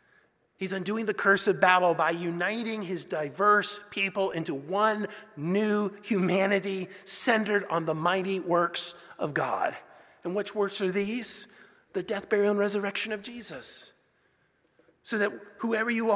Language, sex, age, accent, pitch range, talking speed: English, male, 30-49, American, 185-220 Hz, 140 wpm